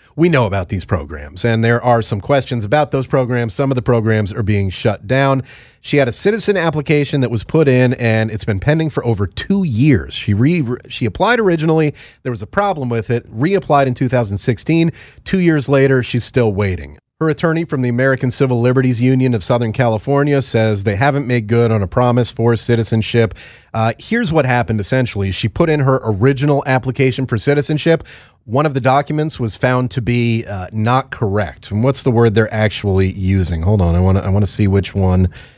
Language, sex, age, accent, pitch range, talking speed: English, male, 30-49, American, 110-140 Hz, 205 wpm